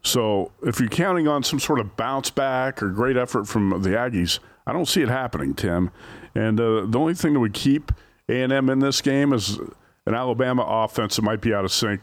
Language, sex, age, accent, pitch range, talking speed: English, male, 50-69, American, 105-125 Hz, 220 wpm